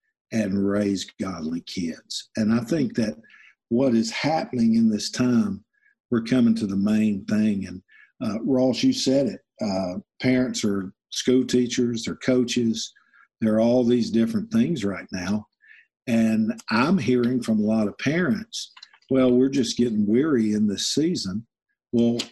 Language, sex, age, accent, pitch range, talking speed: English, male, 50-69, American, 110-170 Hz, 155 wpm